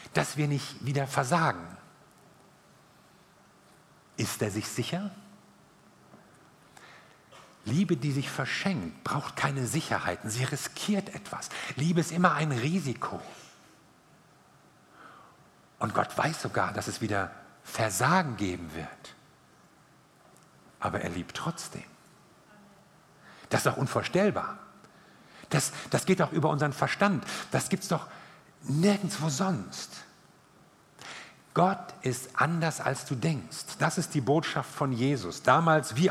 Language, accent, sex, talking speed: German, German, male, 115 wpm